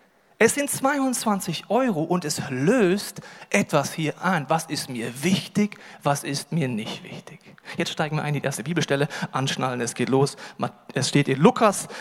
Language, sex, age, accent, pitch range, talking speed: German, male, 40-59, German, 155-210 Hz, 175 wpm